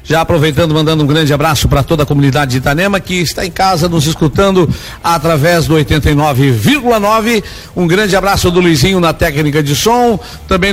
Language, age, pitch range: Portuguese, 60-79, 145-185 Hz